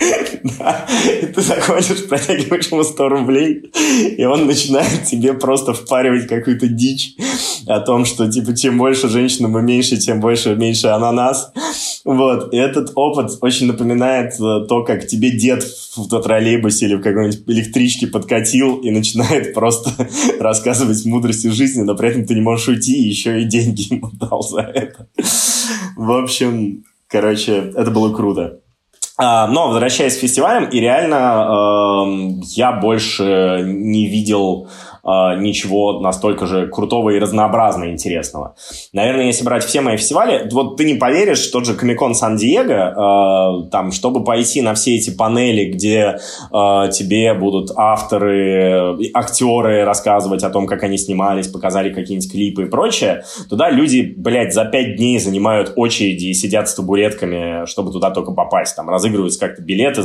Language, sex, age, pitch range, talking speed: Russian, male, 20-39, 100-125 Hz, 150 wpm